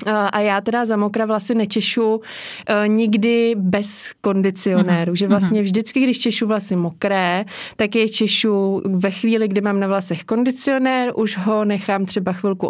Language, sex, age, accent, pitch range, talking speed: Czech, female, 20-39, native, 195-220 Hz, 150 wpm